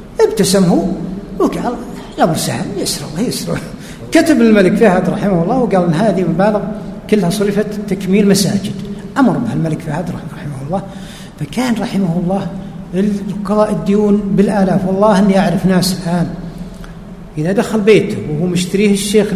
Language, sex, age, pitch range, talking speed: Arabic, male, 60-79, 190-225 Hz, 130 wpm